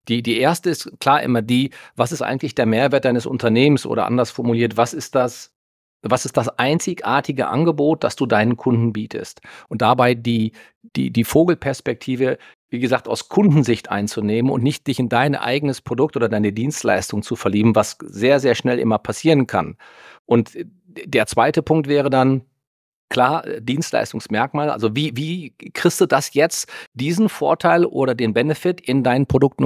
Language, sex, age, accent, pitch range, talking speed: German, male, 40-59, German, 120-155 Hz, 170 wpm